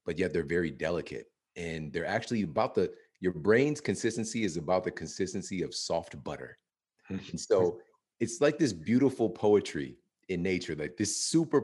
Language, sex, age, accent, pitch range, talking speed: English, male, 40-59, American, 90-125 Hz, 160 wpm